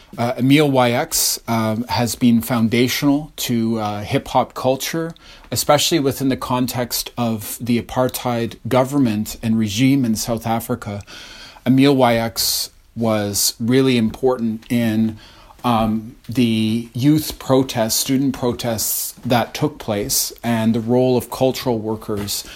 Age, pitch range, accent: 30-49, 110-130 Hz, American